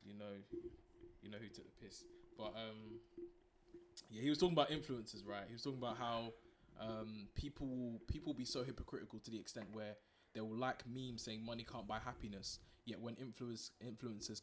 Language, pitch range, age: English, 110-130 Hz, 20-39